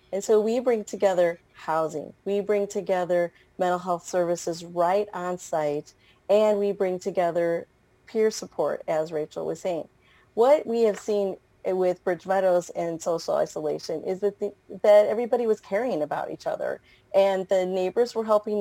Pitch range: 170-210 Hz